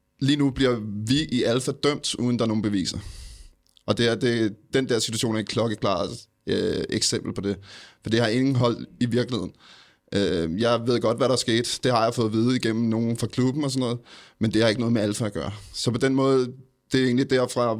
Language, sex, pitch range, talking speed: Danish, male, 105-120 Hz, 240 wpm